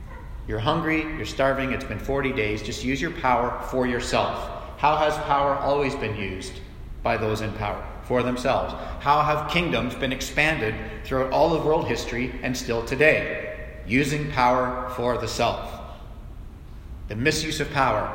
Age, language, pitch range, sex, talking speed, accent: 40-59, English, 110-145 Hz, male, 160 wpm, American